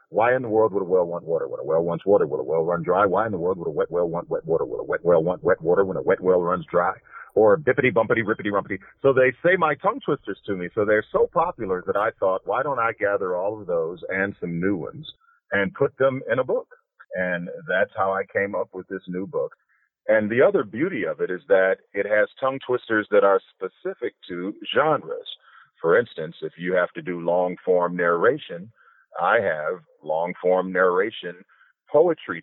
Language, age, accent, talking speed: English, 50-69, American, 230 wpm